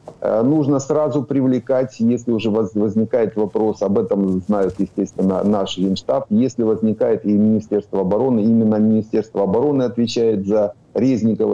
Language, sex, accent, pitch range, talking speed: Ukrainian, male, native, 100-125 Hz, 125 wpm